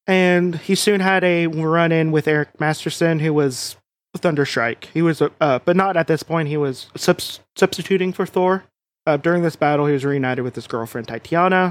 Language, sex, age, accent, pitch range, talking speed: English, male, 30-49, American, 140-170 Hz, 190 wpm